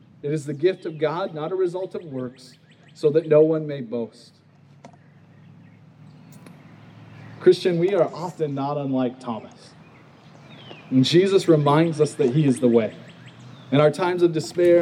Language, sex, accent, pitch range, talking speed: English, male, American, 145-205 Hz, 155 wpm